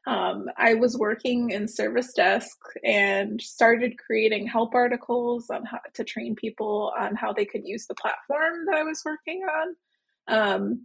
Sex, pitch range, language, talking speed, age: female, 220-305 Hz, English, 165 wpm, 20-39